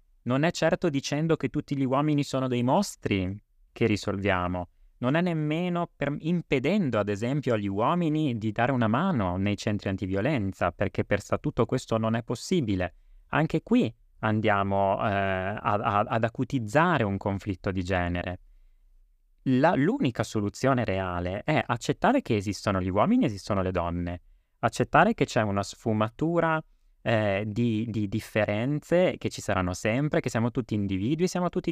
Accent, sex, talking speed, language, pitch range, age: native, male, 145 wpm, Italian, 100-140 Hz, 30-49